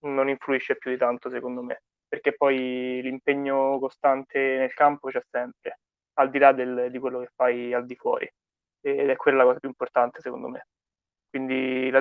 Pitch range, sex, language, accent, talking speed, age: 130-140 Hz, male, Italian, native, 185 wpm, 20-39